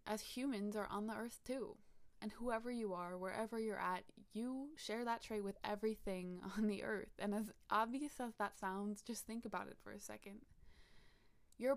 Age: 20-39